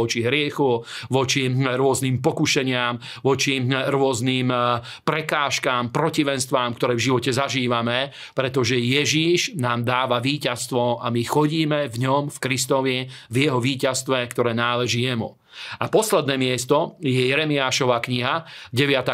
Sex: male